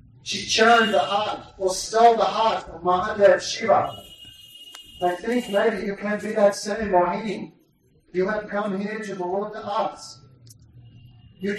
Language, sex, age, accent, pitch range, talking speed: Hindi, male, 40-59, American, 185-220 Hz, 145 wpm